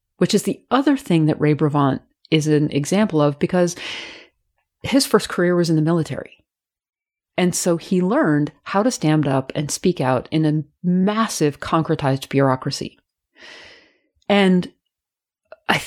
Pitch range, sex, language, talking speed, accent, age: 155-205 Hz, female, English, 145 wpm, American, 40-59